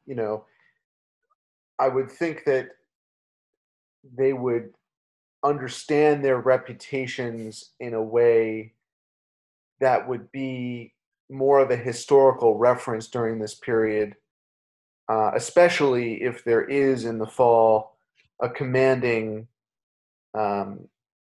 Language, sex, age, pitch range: English, male, 30-49, 110-140 Hz